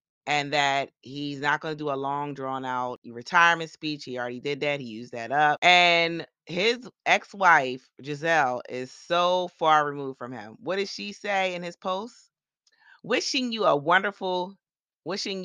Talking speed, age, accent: 170 wpm, 30-49, American